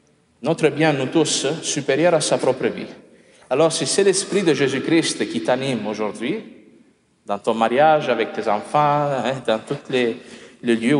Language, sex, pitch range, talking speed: French, male, 115-150 Hz, 160 wpm